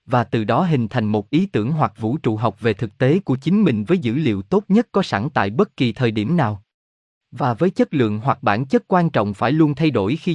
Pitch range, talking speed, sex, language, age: 115-160 Hz, 260 wpm, male, Vietnamese, 20-39